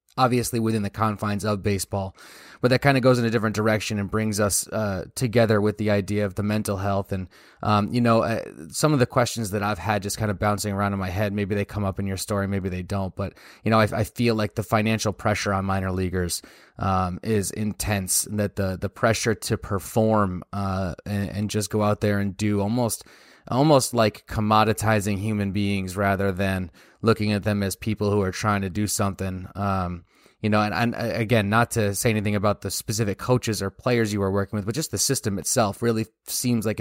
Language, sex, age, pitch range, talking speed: English, male, 20-39, 100-110 Hz, 220 wpm